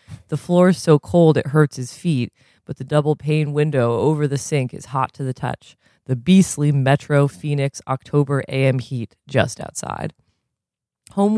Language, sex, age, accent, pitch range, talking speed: English, female, 20-39, American, 130-150 Hz, 165 wpm